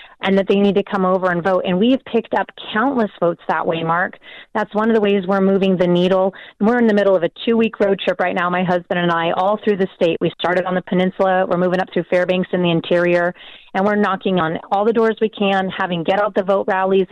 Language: English